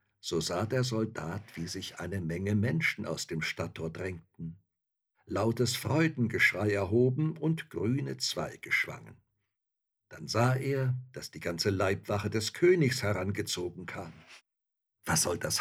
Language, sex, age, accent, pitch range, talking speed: German, male, 60-79, German, 95-125 Hz, 130 wpm